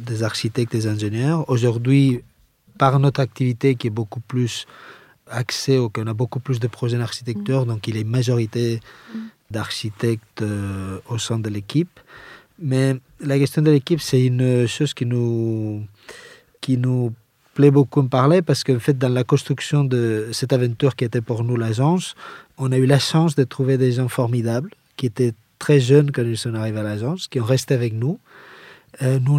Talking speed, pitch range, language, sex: 175 wpm, 120-140 Hz, French, male